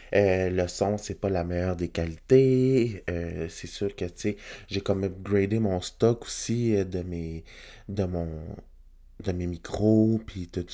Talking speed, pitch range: 155 wpm, 95-110 Hz